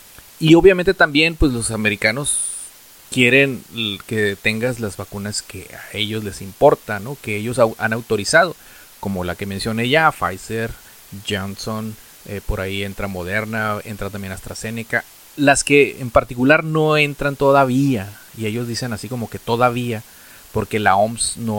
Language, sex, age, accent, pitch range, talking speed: Spanish, male, 30-49, Mexican, 105-135 Hz, 150 wpm